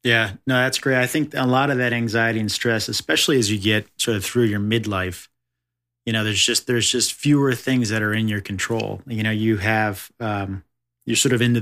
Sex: male